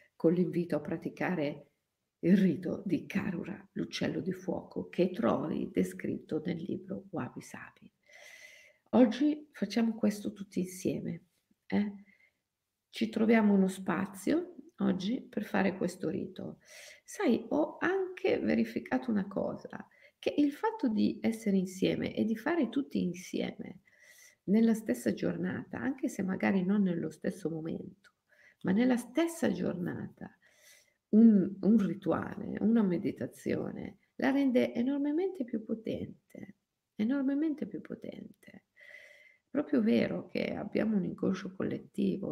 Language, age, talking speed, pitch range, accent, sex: Italian, 50-69, 120 wpm, 190-275 Hz, native, female